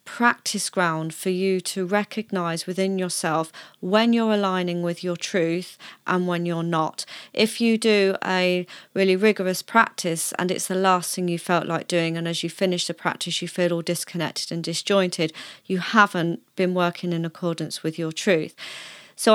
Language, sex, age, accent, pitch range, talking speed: English, female, 30-49, British, 175-215 Hz, 175 wpm